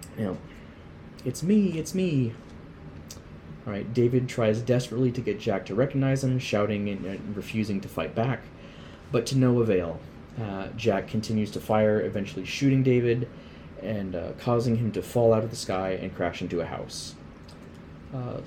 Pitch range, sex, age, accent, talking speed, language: 90-120 Hz, male, 20-39, American, 165 wpm, English